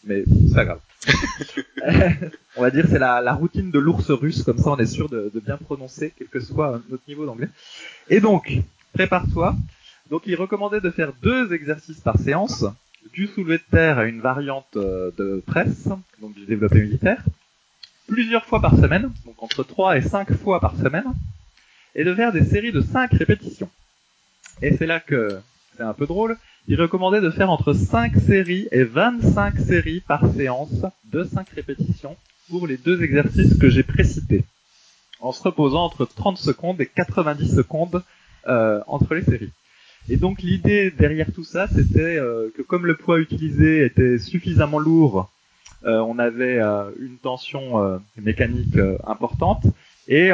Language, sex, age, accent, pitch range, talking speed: French, male, 20-39, French, 115-170 Hz, 170 wpm